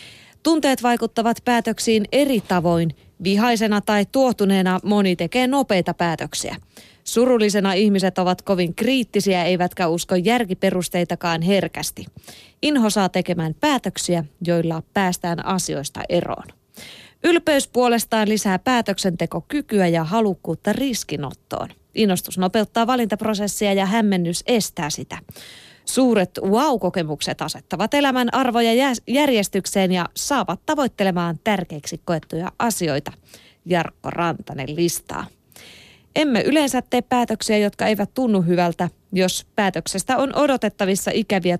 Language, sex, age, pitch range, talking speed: Finnish, female, 20-39, 175-235 Hz, 100 wpm